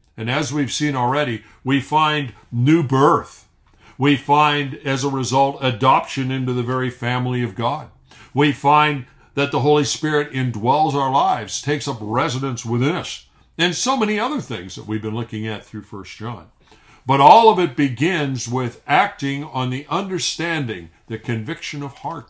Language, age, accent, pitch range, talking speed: English, 50-69, American, 115-150 Hz, 165 wpm